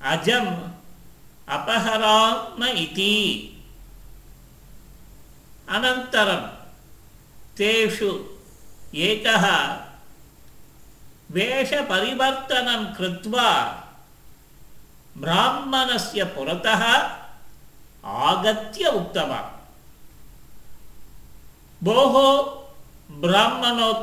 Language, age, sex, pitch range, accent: Tamil, 50-69, male, 175-245 Hz, native